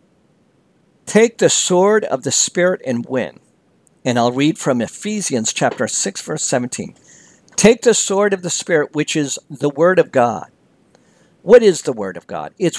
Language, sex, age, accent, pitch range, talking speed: English, male, 50-69, American, 130-185 Hz, 170 wpm